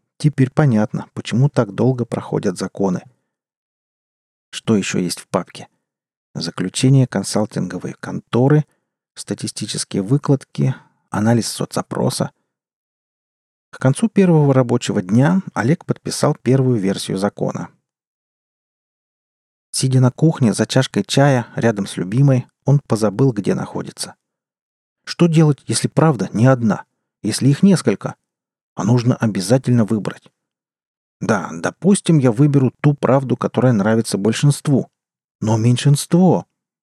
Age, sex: 40-59, male